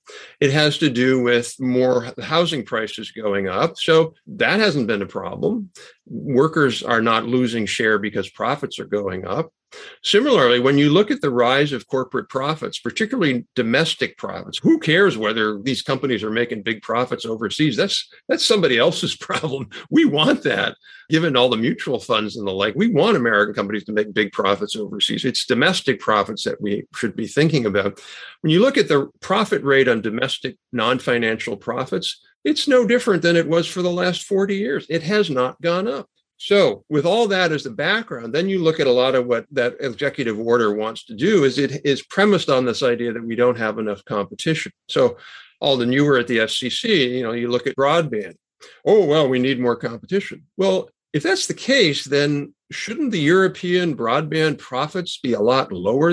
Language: English